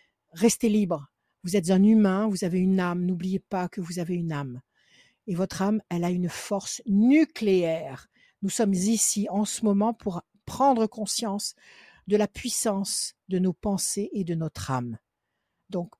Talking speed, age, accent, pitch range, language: 170 wpm, 60-79, French, 190-230 Hz, French